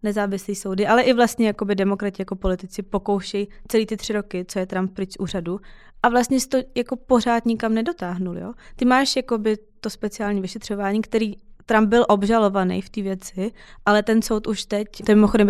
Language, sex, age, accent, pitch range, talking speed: Czech, female, 20-39, native, 195-225 Hz, 190 wpm